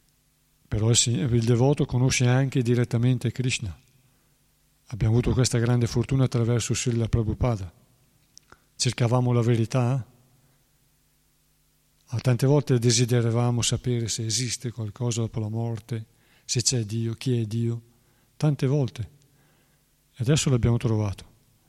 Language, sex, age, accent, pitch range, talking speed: Italian, male, 50-69, native, 115-140 Hz, 110 wpm